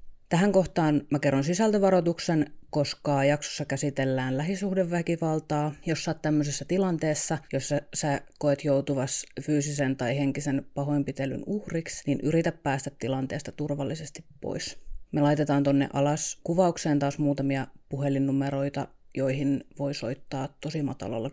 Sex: female